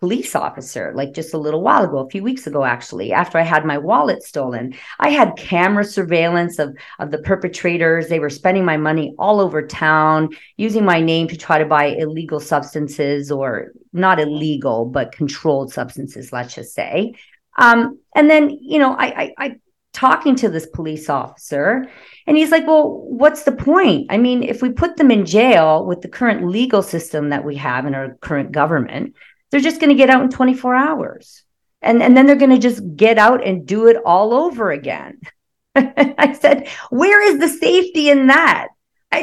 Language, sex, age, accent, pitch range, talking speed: English, female, 40-59, American, 155-260 Hz, 195 wpm